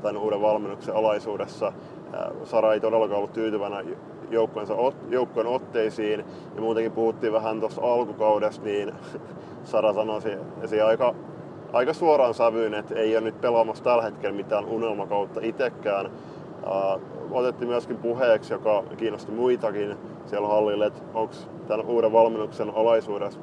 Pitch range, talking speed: 105-115 Hz, 125 wpm